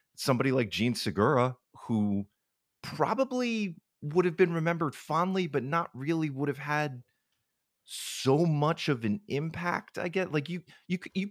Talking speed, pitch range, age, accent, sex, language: 140 wpm, 100-155 Hz, 30-49, American, male, English